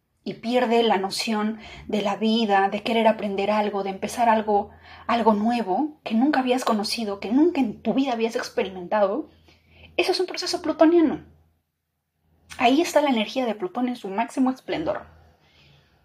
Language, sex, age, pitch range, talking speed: Spanish, female, 30-49, 195-250 Hz, 155 wpm